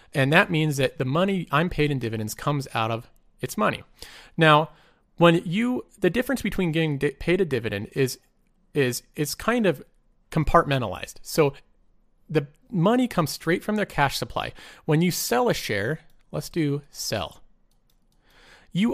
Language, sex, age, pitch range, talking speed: English, male, 30-49, 130-175 Hz, 160 wpm